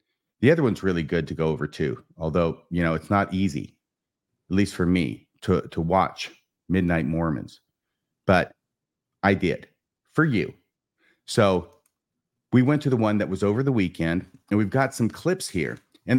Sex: male